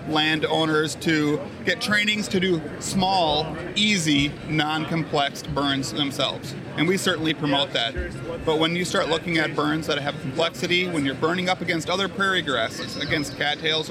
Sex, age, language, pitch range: male, 30-49, English, 145-170 Hz